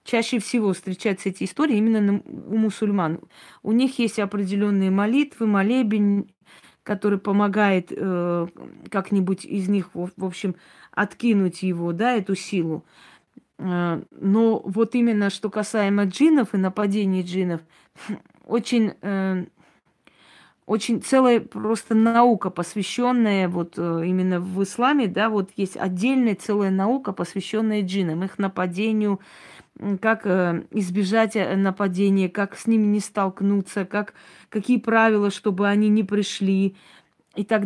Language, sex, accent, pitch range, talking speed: Russian, female, native, 190-225 Hz, 120 wpm